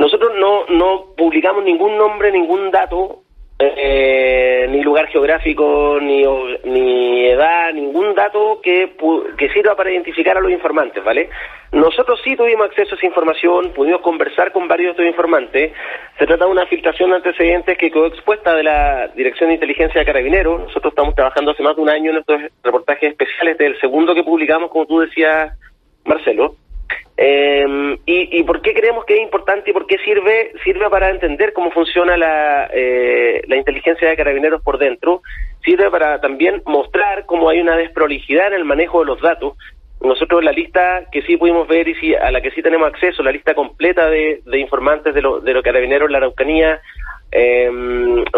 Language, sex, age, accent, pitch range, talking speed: Spanish, male, 30-49, Argentinian, 145-180 Hz, 180 wpm